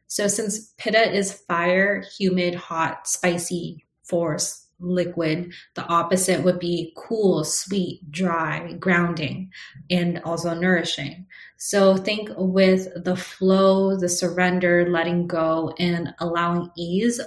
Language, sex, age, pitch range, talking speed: English, female, 20-39, 170-190 Hz, 115 wpm